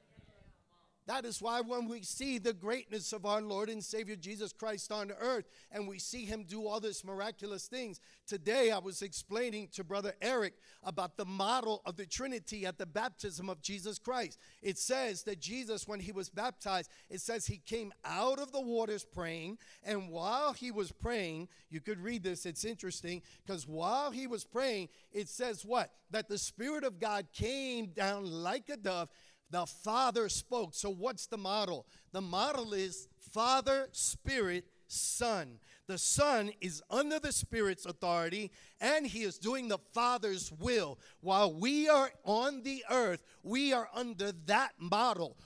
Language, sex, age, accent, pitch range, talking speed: English, male, 50-69, American, 190-240 Hz, 170 wpm